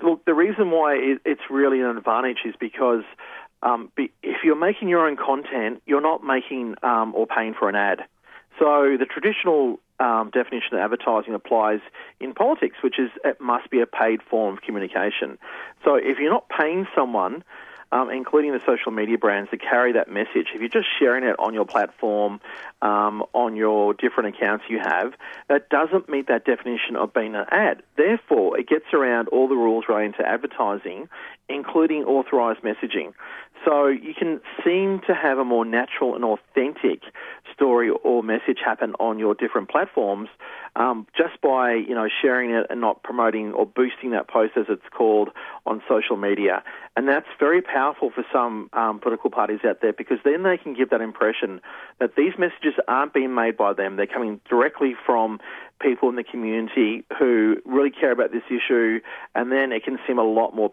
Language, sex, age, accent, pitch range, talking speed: English, male, 40-59, Australian, 110-155 Hz, 185 wpm